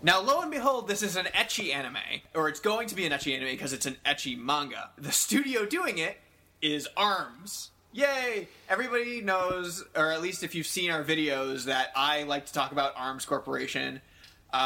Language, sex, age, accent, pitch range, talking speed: English, male, 20-39, American, 140-175 Hz, 195 wpm